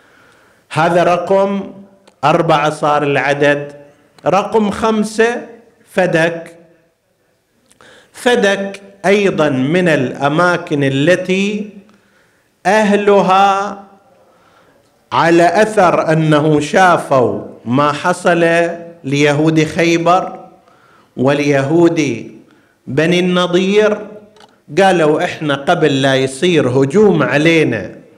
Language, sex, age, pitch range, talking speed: Arabic, male, 50-69, 150-200 Hz, 70 wpm